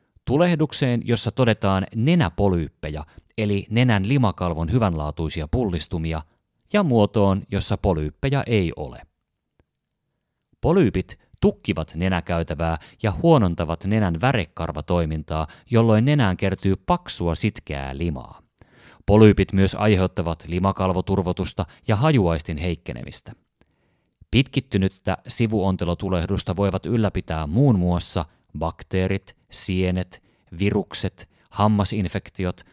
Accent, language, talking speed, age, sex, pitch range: native, Finnish, 85 wpm, 30-49, male, 85-115 Hz